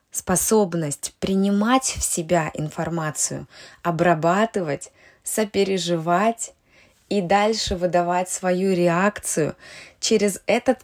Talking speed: 80 wpm